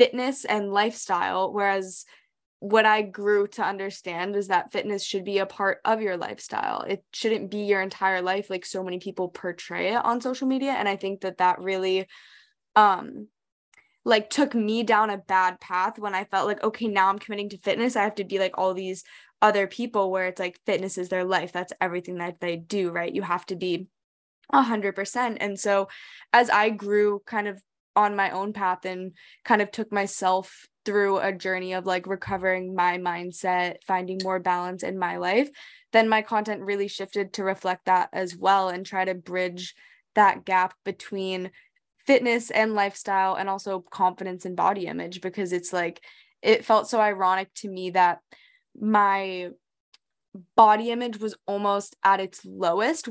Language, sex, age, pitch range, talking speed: English, female, 10-29, 185-210 Hz, 180 wpm